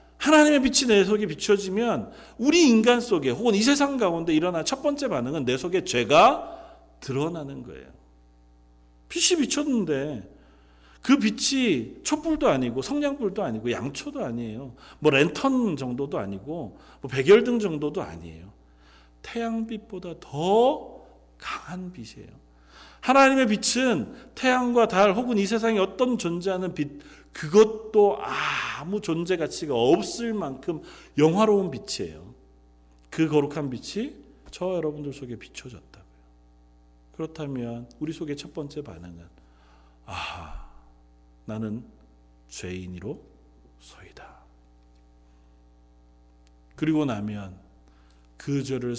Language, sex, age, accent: Korean, male, 40-59, native